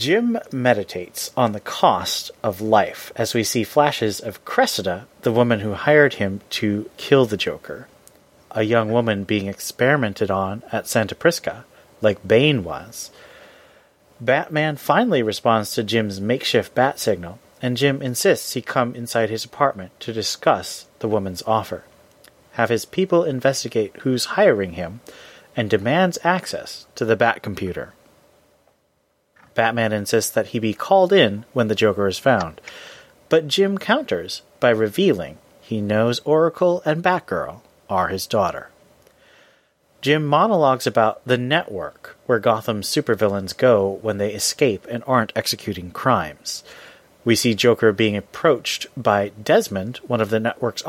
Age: 30-49